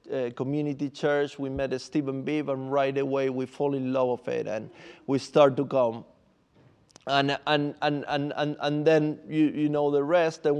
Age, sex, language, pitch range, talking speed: 30-49, male, English, 135-155 Hz, 205 wpm